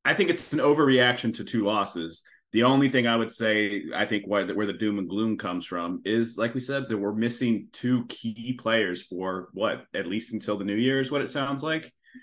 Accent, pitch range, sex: American, 100-125 Hz, male